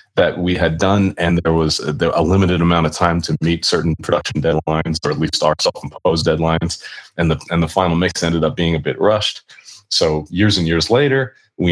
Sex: male